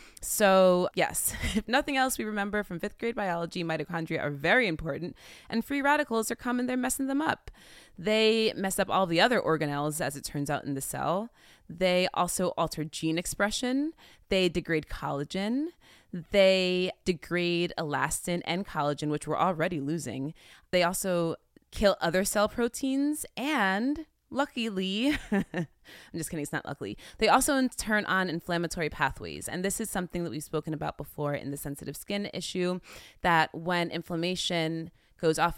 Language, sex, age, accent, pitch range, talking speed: English, female, 20-39, American, 160-215 Hz, 160 wpm